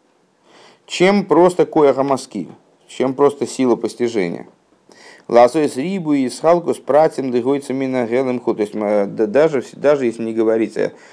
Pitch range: 105-130 Hz